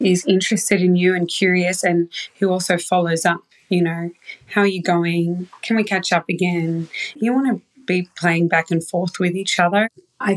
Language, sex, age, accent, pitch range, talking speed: English, female, 20-39, Australian, 175-205 Hz, 195 wpm